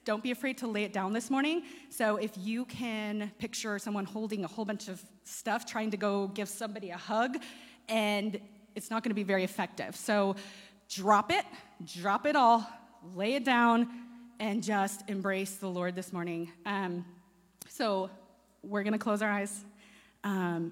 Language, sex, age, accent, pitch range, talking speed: English, female, 30-49, American, 185-225 Hz, 175 wpm